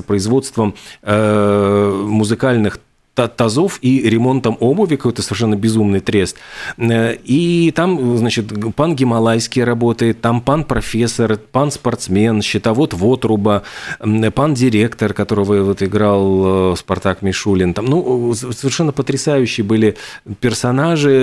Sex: male